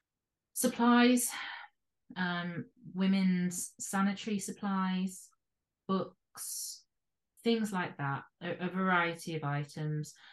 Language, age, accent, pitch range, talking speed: English, 30-49, British, 150-195 Hz, 80 wpm